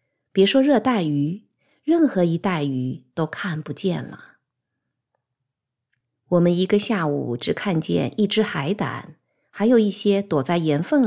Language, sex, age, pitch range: Chinese, female, 50-69, 140-210 Hz